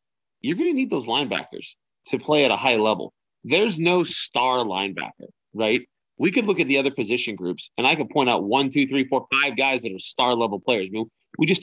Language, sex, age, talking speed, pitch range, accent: English, male, 30-49, 230 wpm, 125-210 Hz, American